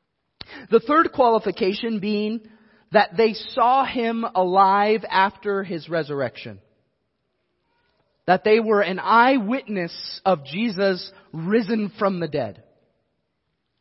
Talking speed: 100 wpm